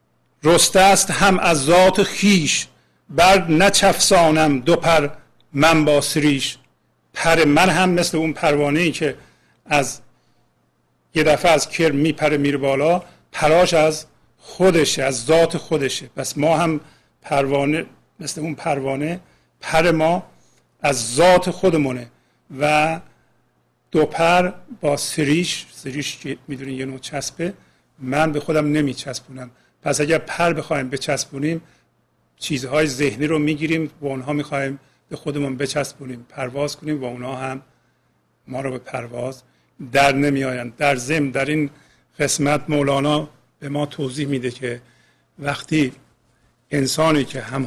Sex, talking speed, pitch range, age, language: male, 130 wpm, 135-160 Hz, 50-69, Persian